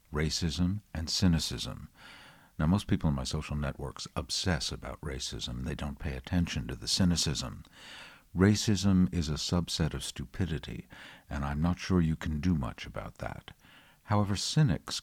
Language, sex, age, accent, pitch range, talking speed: English, male, 60-79, American, 75-90 Hz, 150 wpm